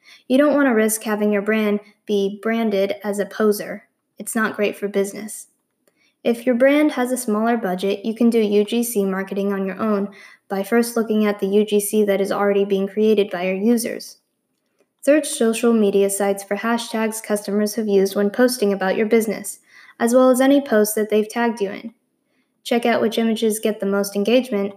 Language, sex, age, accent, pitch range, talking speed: English, female, 10-29, American, 205-235 Hz, 190 wpm